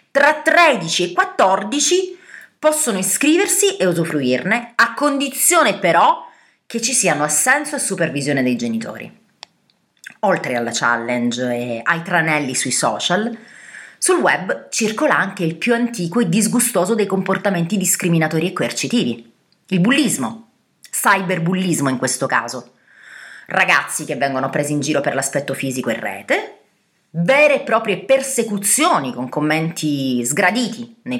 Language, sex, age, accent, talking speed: Italian, female, 30-49, native, 125 wpm